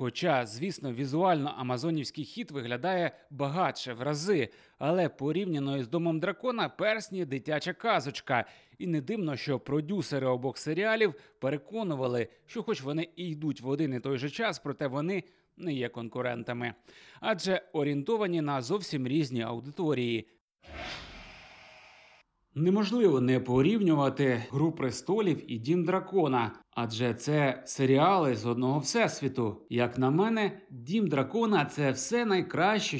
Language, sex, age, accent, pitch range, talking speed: Ukrainian, male, 30-49, native, 125-180 Hz, 125 wpm